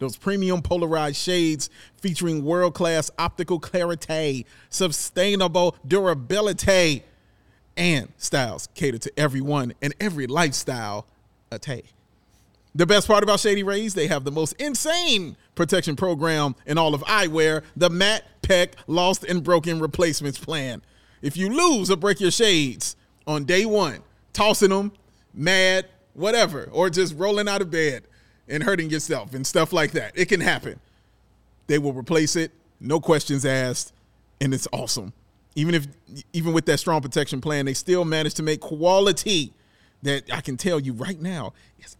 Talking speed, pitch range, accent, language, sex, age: 150 wpm, 135-180 Hz, American, English, male, 30-49